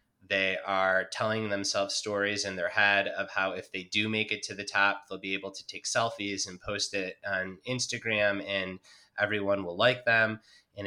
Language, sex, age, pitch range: English, male, 20-39, 100-110 Hz